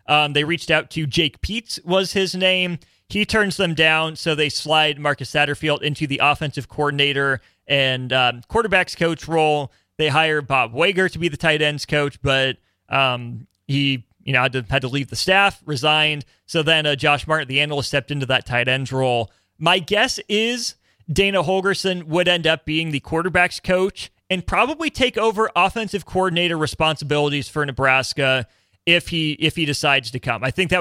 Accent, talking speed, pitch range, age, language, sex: American, 185 wpm, 145-185 Hz, 30-49, English, male